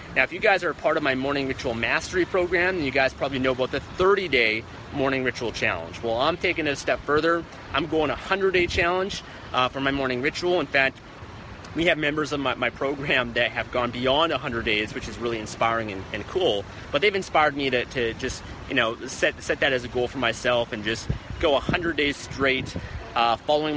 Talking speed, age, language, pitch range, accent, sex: 220 wpm, 30-49, English, 120-150 Hz, American, male